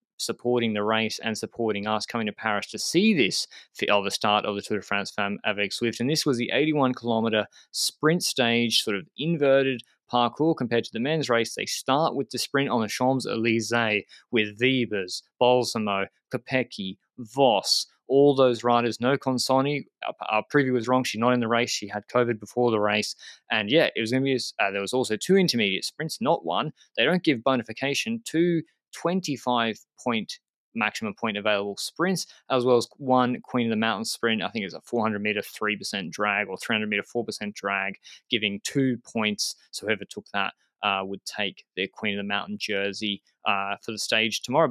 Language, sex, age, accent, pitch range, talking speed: English, male, 20-39, Australian, 110-130 Hz, 195 wpm